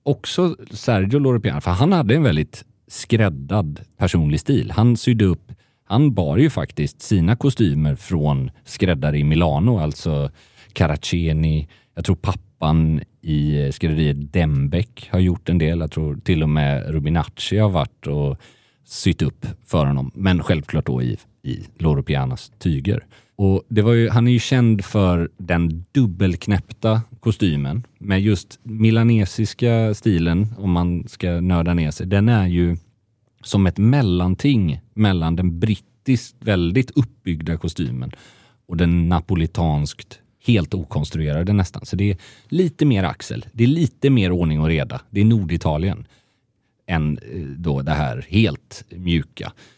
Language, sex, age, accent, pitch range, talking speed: English, male, 30-49, Swedish, 85-115 Hz, 145 wpm